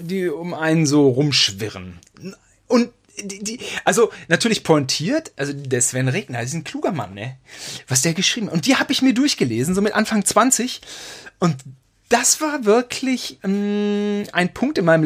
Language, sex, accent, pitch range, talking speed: German, male, German, 135-200 Hz, 175 wpm